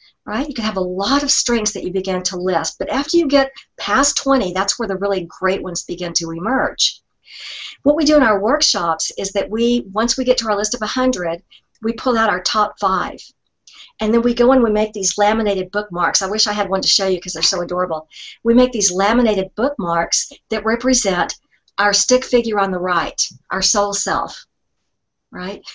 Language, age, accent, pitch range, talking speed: English, 50-69, American, 190-235 Hz, 210 wpm